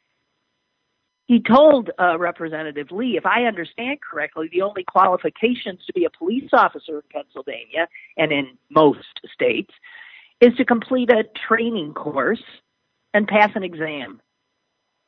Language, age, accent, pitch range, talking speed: English, 50-69, American, 165-245 Hz, 130 wpm